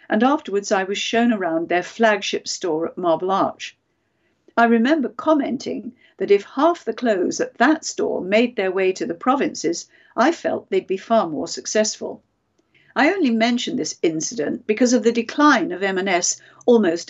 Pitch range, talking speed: 200-315 Hz, 170 wpm